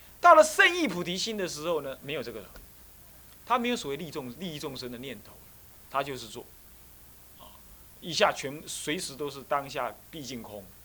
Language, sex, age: Chinese, male, 30-49